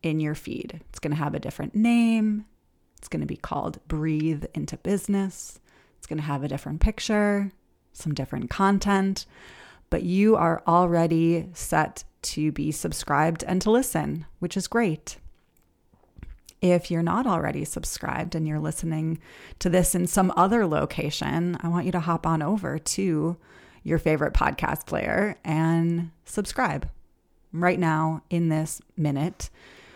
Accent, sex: American, female